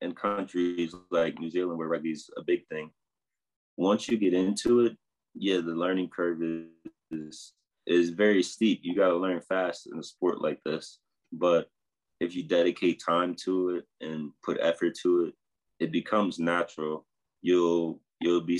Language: English